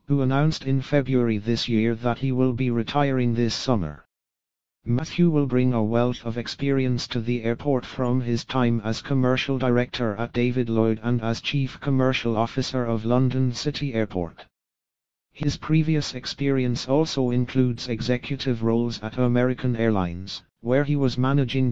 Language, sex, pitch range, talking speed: English, male, 115-135 Hz, 150 wpm